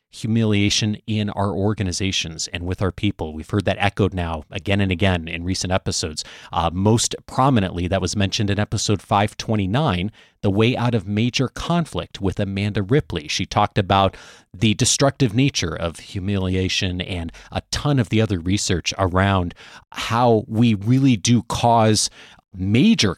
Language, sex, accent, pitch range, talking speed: English, male, American, 95-125 Hz, 155 wpm